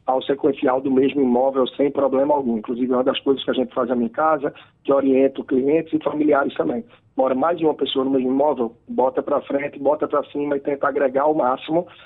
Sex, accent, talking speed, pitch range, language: male, Brazilian, 225 wpm, 140-175 Hz, Portuguese